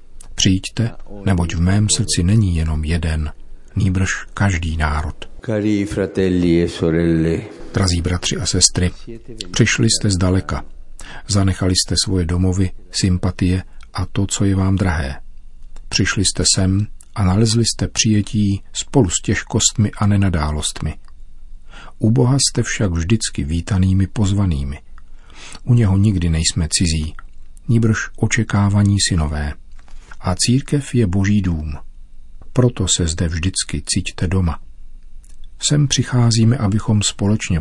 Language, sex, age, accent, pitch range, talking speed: Czech, male, 50-69, native, 80-105 Hz, 115 wpm